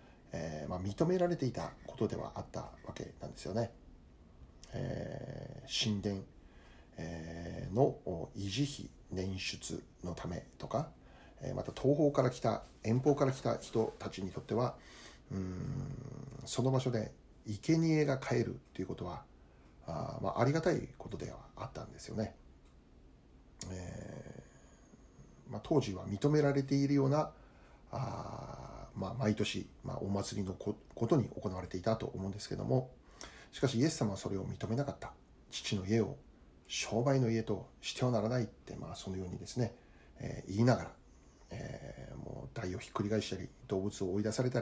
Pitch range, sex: 95-130 Hz, male